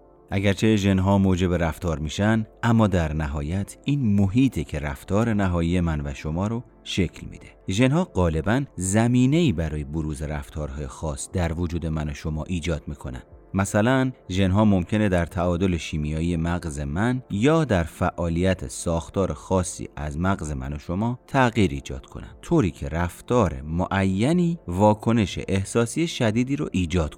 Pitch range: 80-105 Hz